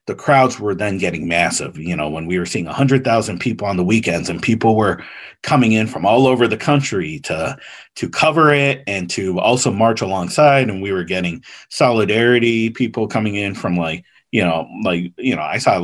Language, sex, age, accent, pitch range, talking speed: English, male, 40-59, American, 105-145 Hz, 210 wpm